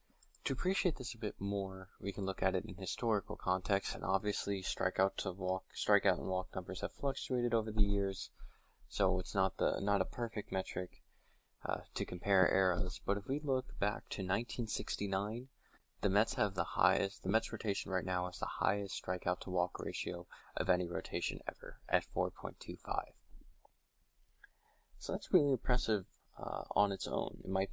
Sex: male